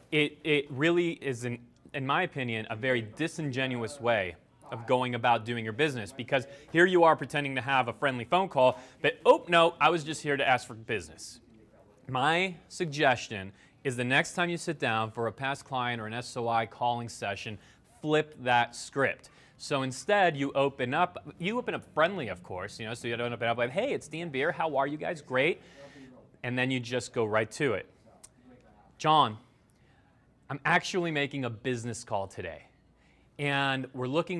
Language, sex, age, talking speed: English, male, 30-49, 190 wpm